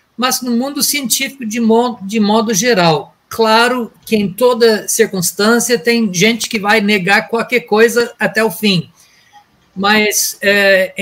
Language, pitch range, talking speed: Portuguese, 190-235 Hz, 140 wpm